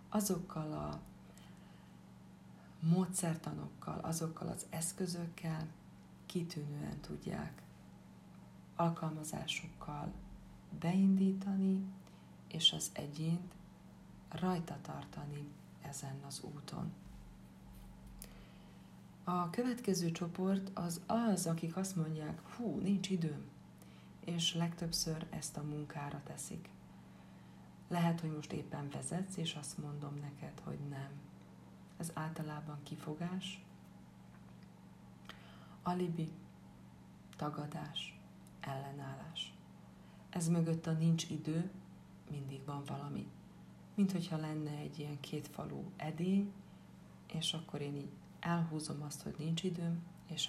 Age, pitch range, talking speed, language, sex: 40-59, 140-170 Hz, 90 wpm, Hungarian, female